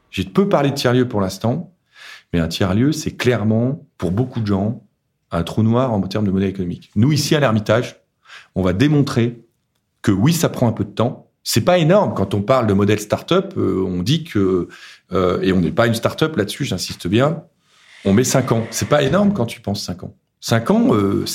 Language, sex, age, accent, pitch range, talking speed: French, male, 40-59, French, 105-155 Hz, 210 wpm